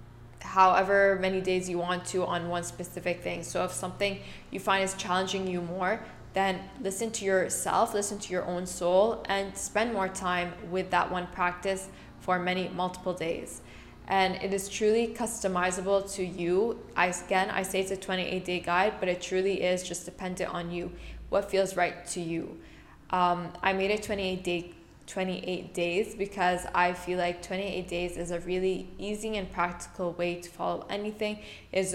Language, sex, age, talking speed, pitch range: English, female, 10-29, 175 wpm, 175-190 Hz